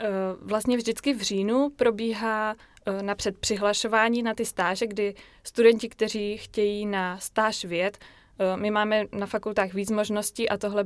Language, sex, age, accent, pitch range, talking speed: Czech, female, 20-39, native, 190-215 Hz, 140 wpm